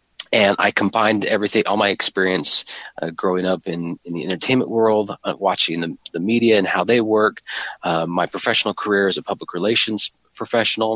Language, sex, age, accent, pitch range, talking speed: English, male, 30-49, American, 95-115 Hz, 180 wpm